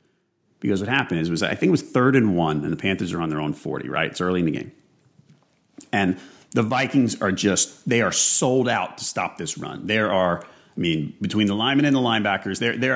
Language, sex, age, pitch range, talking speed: English, male, 40-59, 95-125 Hz, 235 wpm